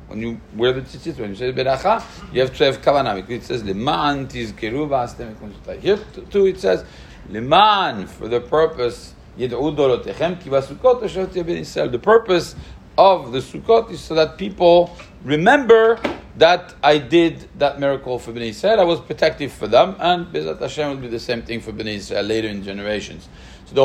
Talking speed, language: 155 wpm, English